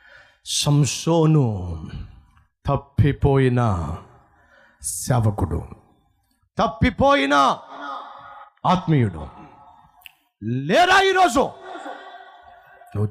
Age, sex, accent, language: 50-69, male, native, Telugu